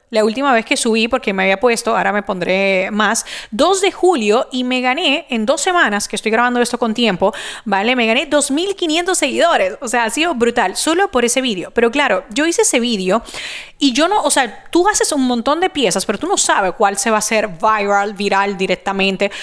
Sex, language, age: female, Spanish, 30-49